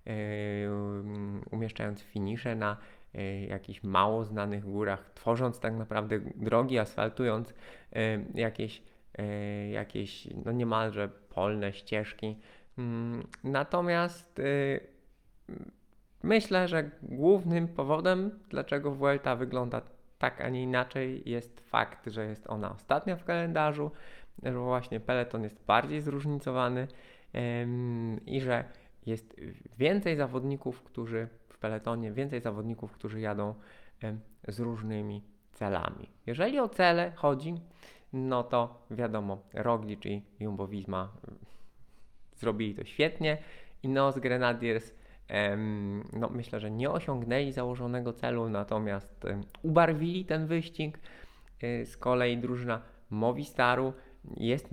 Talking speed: 100 wpm